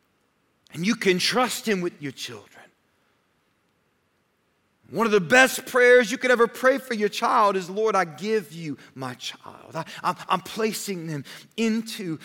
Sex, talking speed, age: male, 155 wpm, 40-59